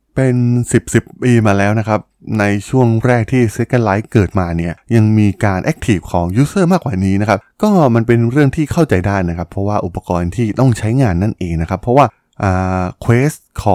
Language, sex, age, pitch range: Thai, male, 20-39, 95-125 Hz